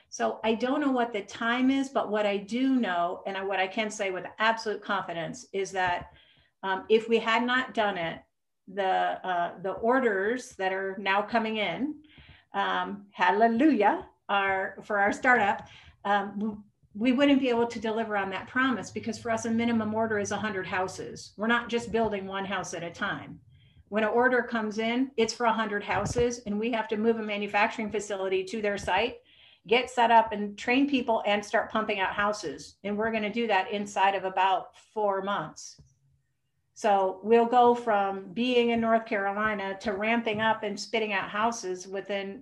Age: 50-69